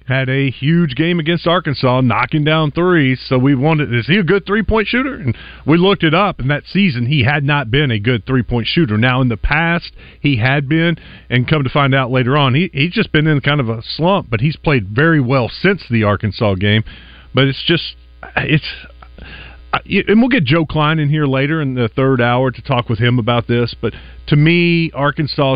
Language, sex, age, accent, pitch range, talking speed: English, male, 40-59, American, 120-155 Hz, 220 wpm